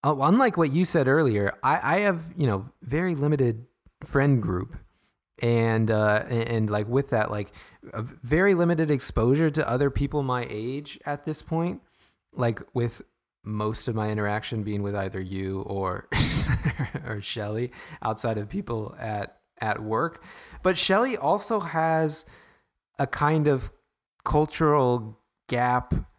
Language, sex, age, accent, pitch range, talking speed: English, male, 20-39, American, 100-135 Hz, 140 wpm